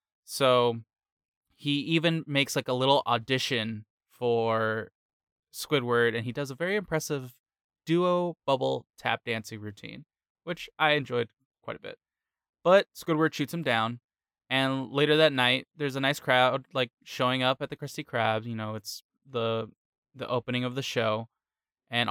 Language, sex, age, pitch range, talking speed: English, male, 20-39, 115-145 Hz, 155 wpm